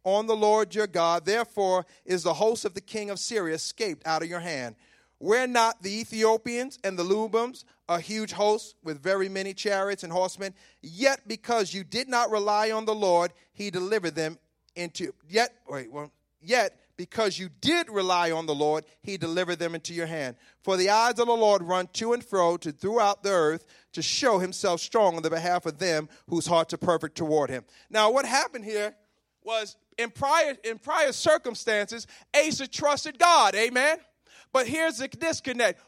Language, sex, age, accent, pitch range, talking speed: English, male, 40-59, American, 190-270 Hz, 185 wpm